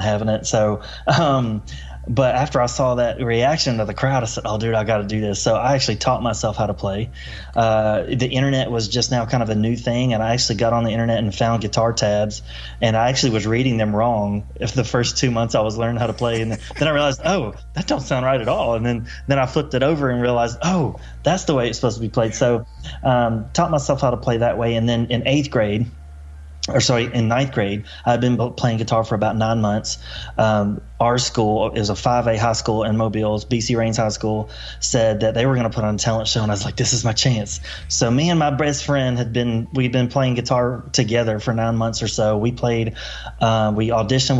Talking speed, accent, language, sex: 245 wpm, American, English, male